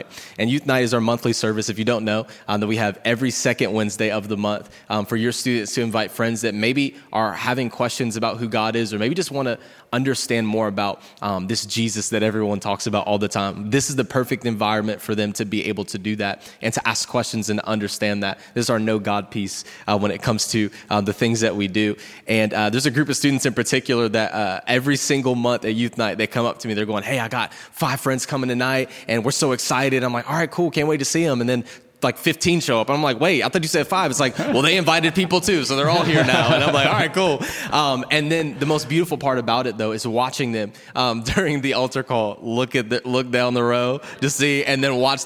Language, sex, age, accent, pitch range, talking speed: English, male, 20-39, American, 110-140 Hz, 265 wpm